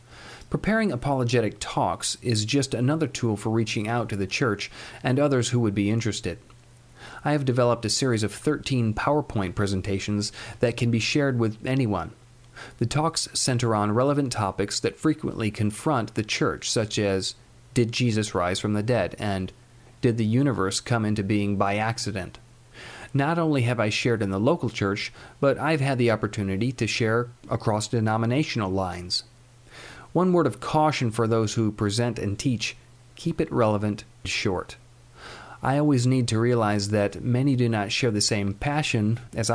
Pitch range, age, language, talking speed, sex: 105-125 Hz, 40-59, English, 165 wpm, male